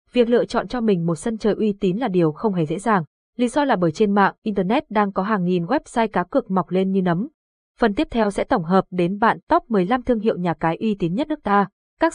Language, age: Vietnamese, 20-39